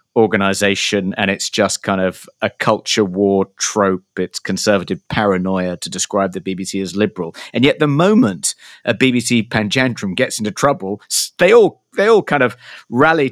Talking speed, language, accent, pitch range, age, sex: 160 wpm, English, British, 95-125 Hz, 50-69, male